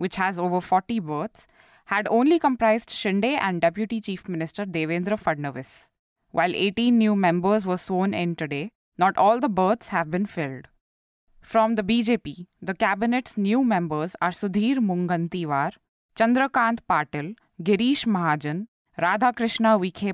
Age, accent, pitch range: 20-39, Indian, 170-225 Hz